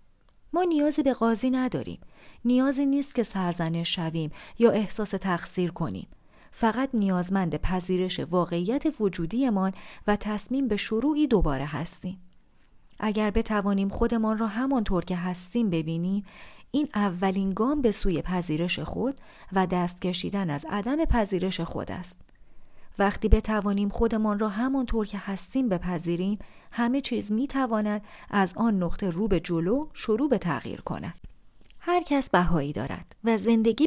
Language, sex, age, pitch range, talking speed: Persian, female, 40-59, 180-245 Hz, 135 wpm